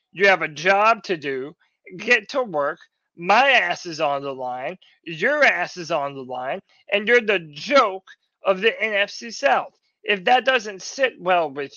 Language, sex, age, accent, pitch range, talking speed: English, male, 30-49, American, 175-220 Hz, 180 wpm